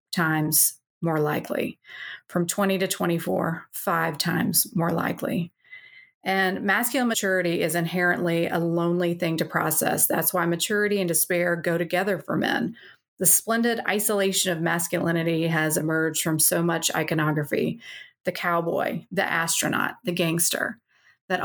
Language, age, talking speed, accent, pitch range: English, 30-49, 135 wpm, American, 170-190 Hz